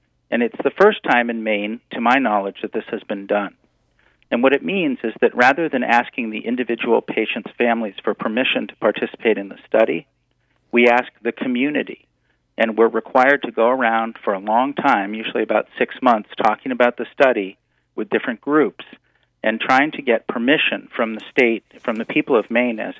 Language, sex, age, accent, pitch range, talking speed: English, male, 40-59, American, 105-125 Hz, 195 wpm